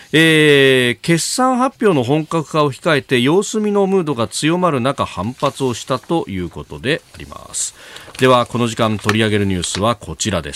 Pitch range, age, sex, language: 115-170 Hz, 40-59, male, Japanese